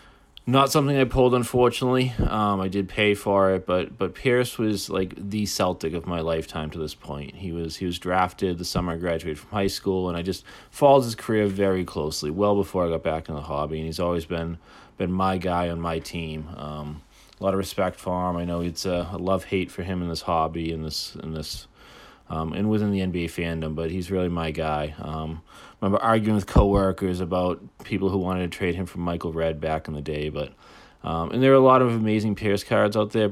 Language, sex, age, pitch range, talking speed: English, male, 30-49, 85-100 Hz, 230 wpm